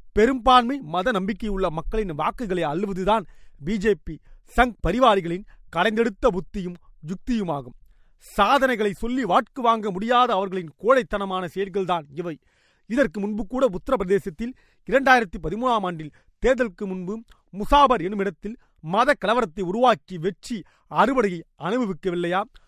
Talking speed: 100 wpm